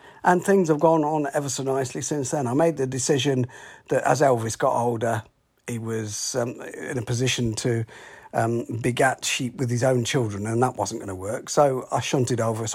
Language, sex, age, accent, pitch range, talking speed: English, male, 40-59, British, 120-155 Hz, 200 wpm